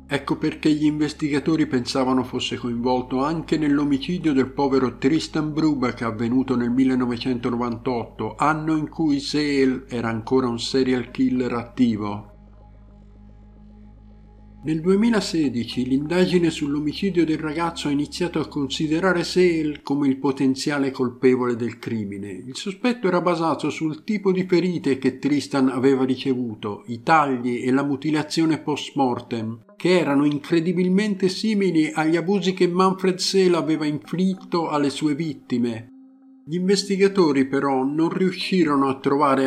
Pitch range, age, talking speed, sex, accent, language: 125-165 Hz, 50-69, 125 wpm, male, native, Italian